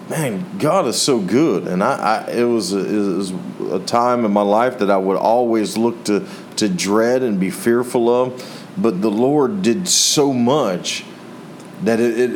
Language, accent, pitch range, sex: English, American, 95-115 Hz, male